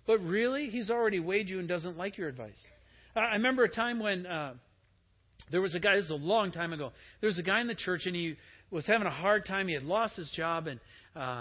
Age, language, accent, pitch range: 50-69, English, American, 145-200 Hz